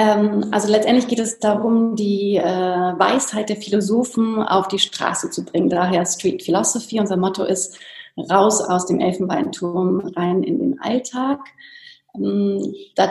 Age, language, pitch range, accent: 30-49, German, 185-225 Hz, German